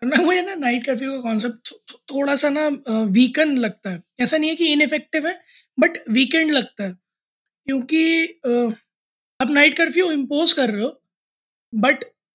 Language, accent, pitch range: Hindi, native, 235-300 Hz